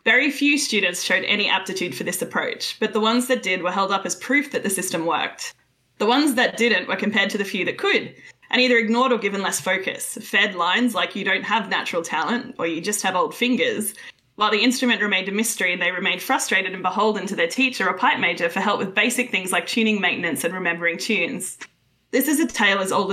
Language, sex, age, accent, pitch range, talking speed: English, female, 20-39, Australian, 185-235 Hz, 235 wpm